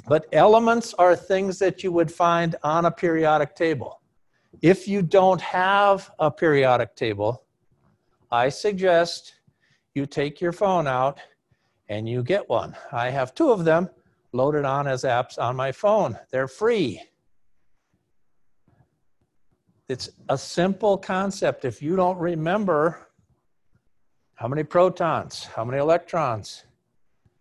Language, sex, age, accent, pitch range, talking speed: English, male, 50-69, American, 140-185 Hz, 125 wpm